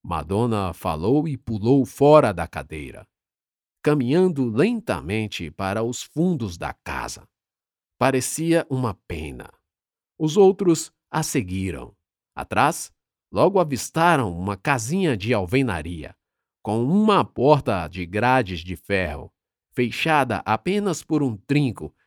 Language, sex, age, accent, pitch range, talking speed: Portuguese, male, 50-69, Brazilian, 90-140 Hz, 110 wpm